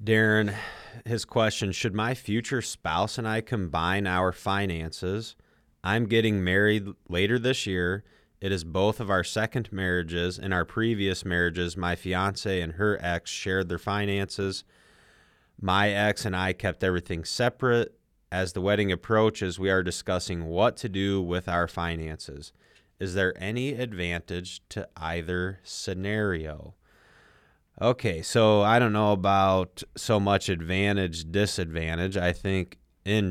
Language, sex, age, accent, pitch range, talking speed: English, male, 30-49, American, 90-105 Hz, 140 wpm